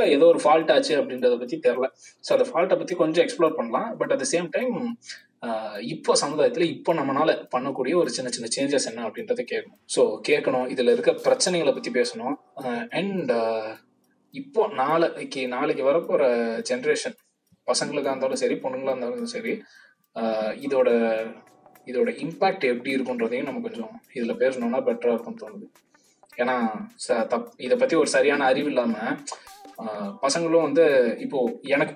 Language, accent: Tamil, native